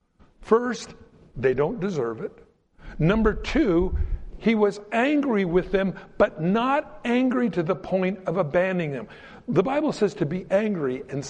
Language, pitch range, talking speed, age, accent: English, 170-245 Hz, 150 wpm, 60-79, American